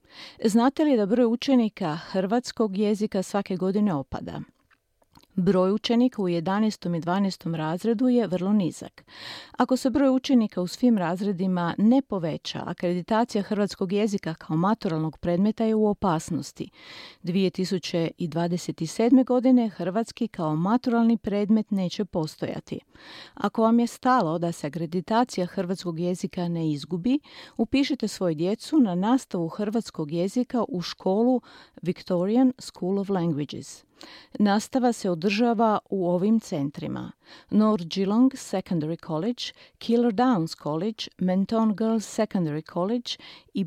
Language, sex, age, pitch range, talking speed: Croatian, female, 40-59, 175-230 Hz, 120 wpm